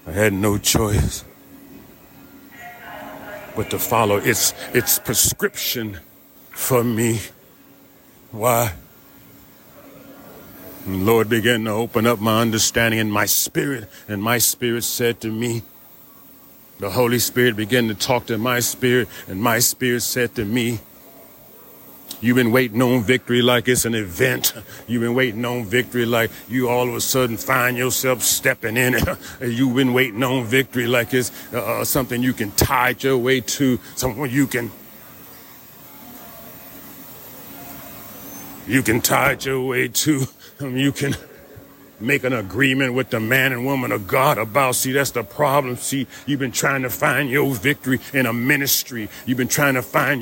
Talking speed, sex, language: 160 wpm, male, English